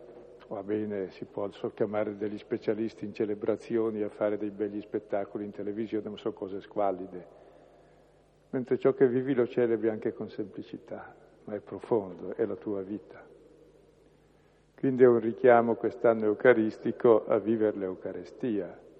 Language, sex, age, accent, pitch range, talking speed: Italian, male, 50-69, native, 105-135 Hz, 145 wpm